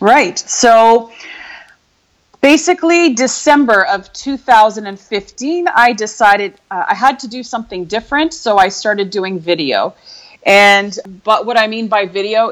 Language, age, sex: English, 30-49, female